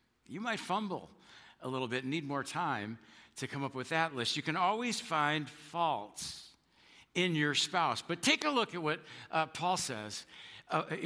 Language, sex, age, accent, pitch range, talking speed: English, male, 50-69, American, 140-175 Hz, 185 wpm